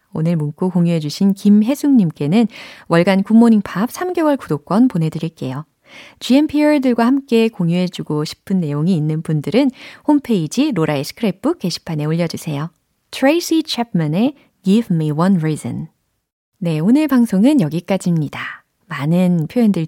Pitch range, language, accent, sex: 160-245 Hz, Korean, native, female